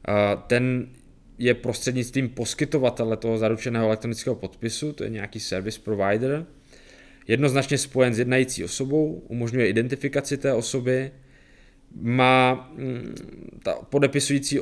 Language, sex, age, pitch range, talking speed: Czech, male, 20-39, 110-135 Hz, 100 wpm